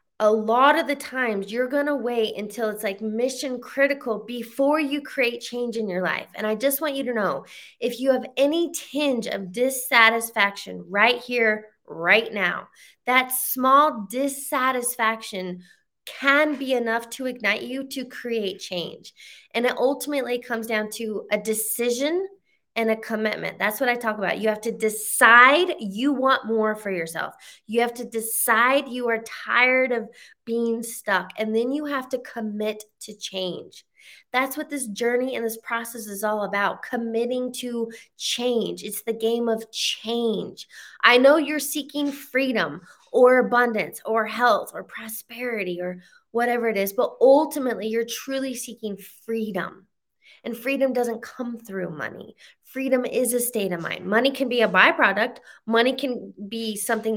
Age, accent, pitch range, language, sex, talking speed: 20-39, American, 215-255 Hz, English, female, 160 wpm